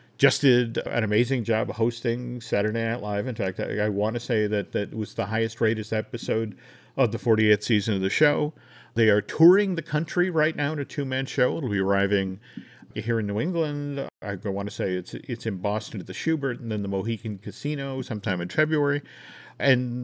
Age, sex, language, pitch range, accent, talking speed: 50-69, male, English, 110-145 Hz, American, 200 wpm